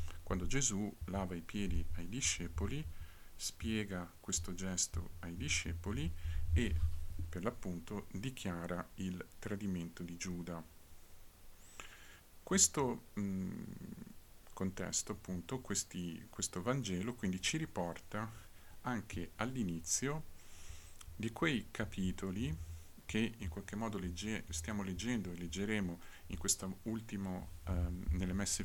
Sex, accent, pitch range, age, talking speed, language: male, native, 85-105 Hz, 50-69, 100 wpm, Italian